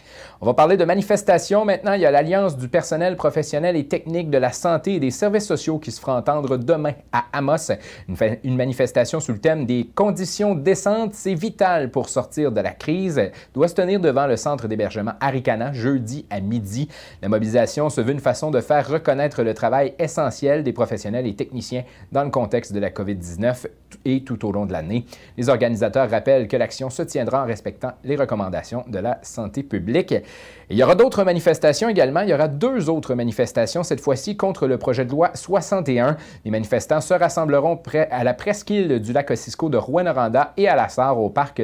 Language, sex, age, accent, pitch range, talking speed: French, male, 30-49, Canadian, 125-170 Hz, 200 wpm